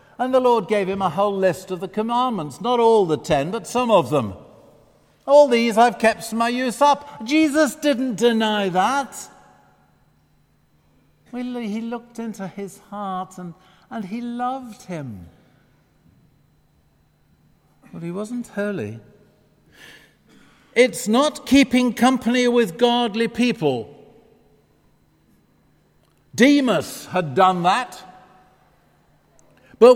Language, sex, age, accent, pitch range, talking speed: English, male, 60-79, British, 140-235 Hz, 110 wpm